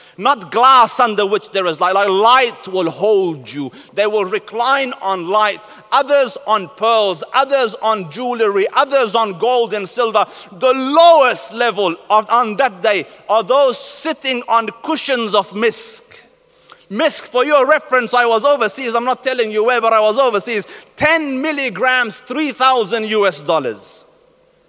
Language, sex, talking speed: English, male, 150 wpm